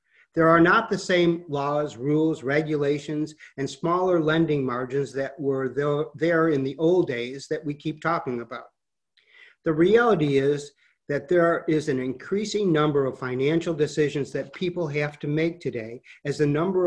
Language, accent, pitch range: English, American, 135-165 Hz